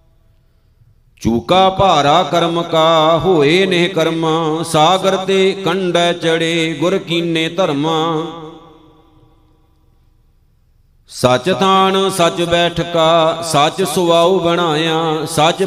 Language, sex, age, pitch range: Punjabi, male, 50-69, 160-175 Hz